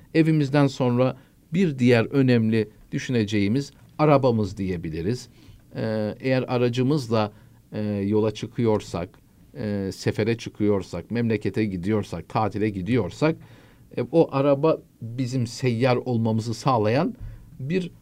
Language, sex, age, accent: Turkish, male, 50-69, native